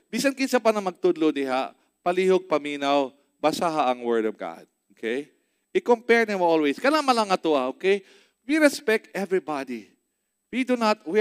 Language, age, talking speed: English, 40-59, 145 wpm